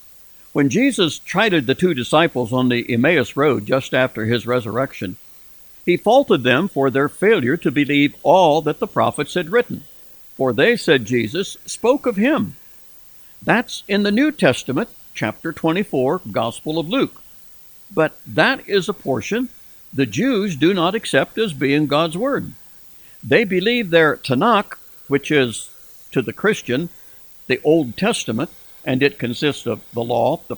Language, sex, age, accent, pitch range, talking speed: English, male, 60-79, American, 125-180 Hz, 155 wpm